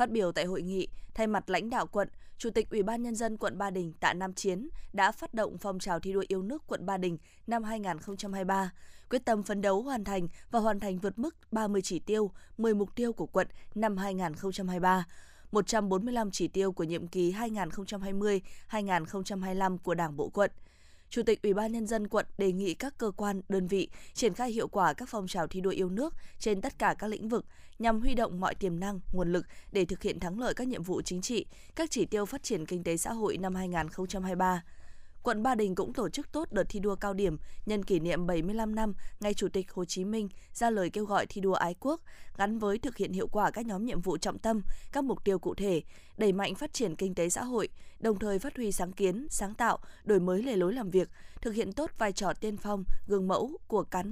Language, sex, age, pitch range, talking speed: Vietnamese, female, 20-39, 185-225 Hz, 230 wpm